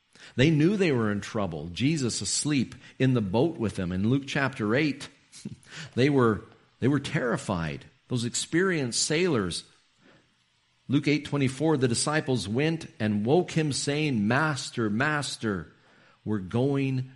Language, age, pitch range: English, 50-69, 100-140 Hz